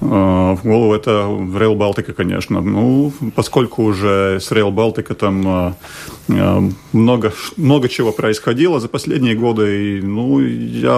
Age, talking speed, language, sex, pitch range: 40-59, 130 wpm, Russian, male, 100-120 Hz